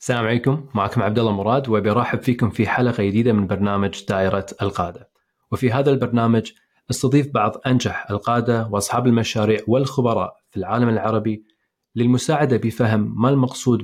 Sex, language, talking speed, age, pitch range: male, Arabic, 140 wpm, 30-49, 105-125 Hz